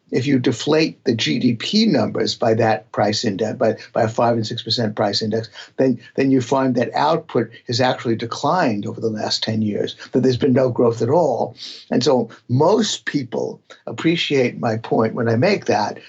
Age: 60-79